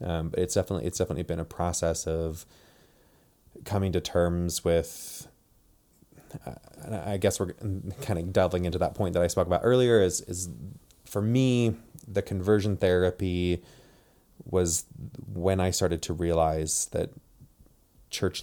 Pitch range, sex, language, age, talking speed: 85-100 Hz, male, English, 20-39, 145 wpm